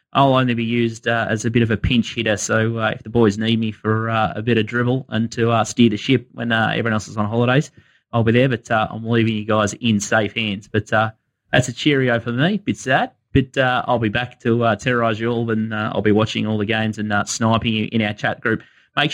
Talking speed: 270 wpm